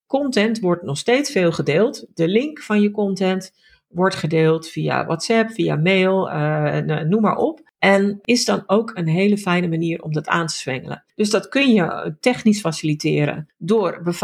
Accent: Dutch